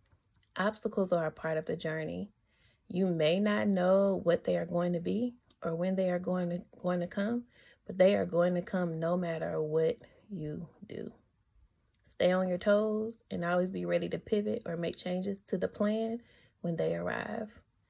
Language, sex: English, female